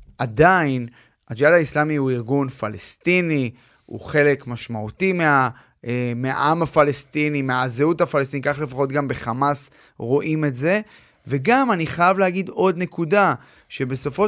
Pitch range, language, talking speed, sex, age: 135-170 Hz, Hebrew, 120 wpm, male, 30-49